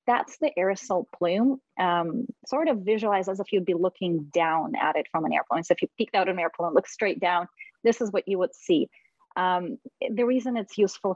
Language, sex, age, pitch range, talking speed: English, female, 30-49, 175-225 Hz, 215 wpm